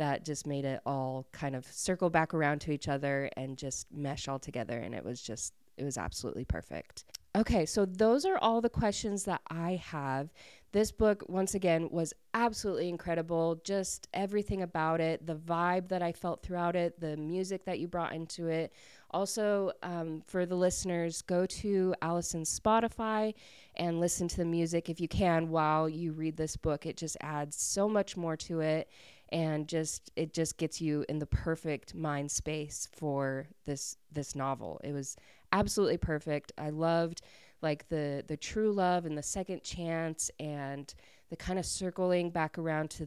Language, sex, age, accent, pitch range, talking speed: English, female, 20-39, American, 150-180 Hz, 180 wpm